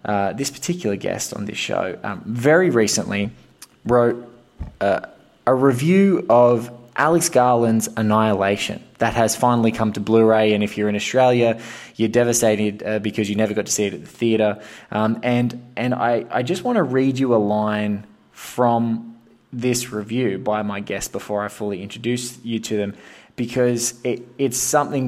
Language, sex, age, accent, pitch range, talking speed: English, male, 20-39, Australian, 105-125 Hz, 170 wpm